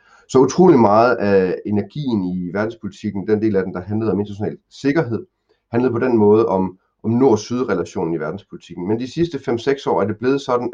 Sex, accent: male, native